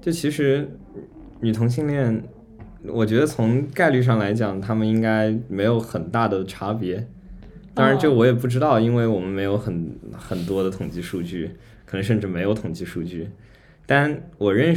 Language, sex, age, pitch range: Chinese, male, 20-39, 95-115 Hz